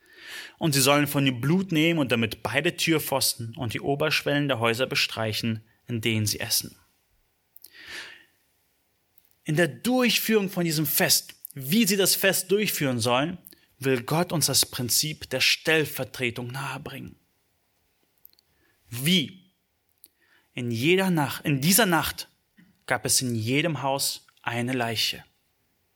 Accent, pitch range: German, 110-165 Hz